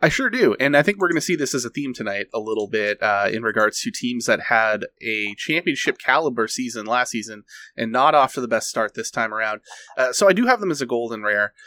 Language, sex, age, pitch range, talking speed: English, male, 30-49, 110-150 Hz, 255 wpm